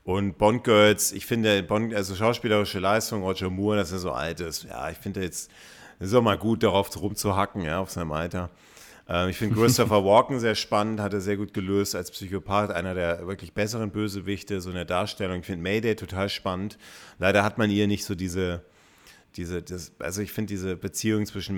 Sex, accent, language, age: male, German, German, 40-59